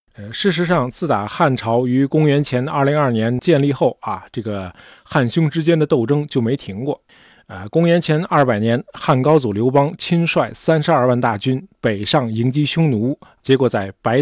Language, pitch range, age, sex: Chinese, 115-150 Hz, 20-39, male